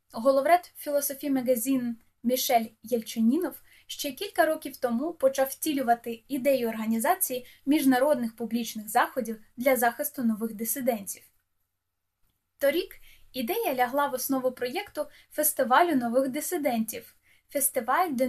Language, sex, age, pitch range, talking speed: Ukrainian, female, 10-29, 235-295 Hz, 100 wpm